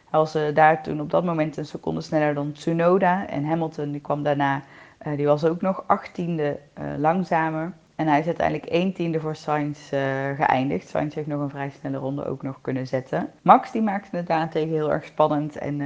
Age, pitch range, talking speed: 30-49, 140-160 Hz, 210 wpm